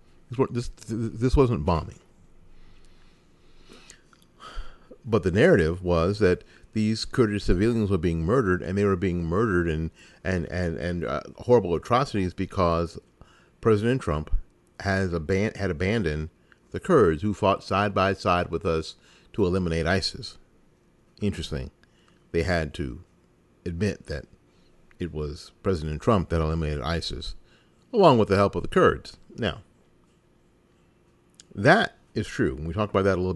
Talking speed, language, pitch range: 130 wpm, English, 80-105 Hz